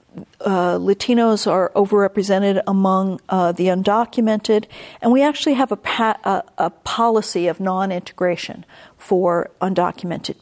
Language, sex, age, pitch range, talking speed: English, female, 50-69, 190-215 Hz, 110 wpm